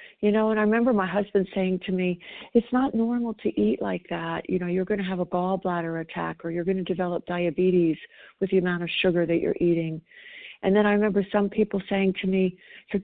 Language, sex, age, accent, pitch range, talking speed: English, female, 60-79, American, 175-235 Hz, 230 wpm